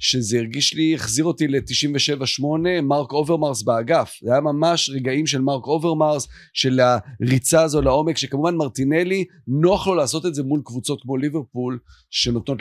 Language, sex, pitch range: Hebrew, male, 125-165 Hz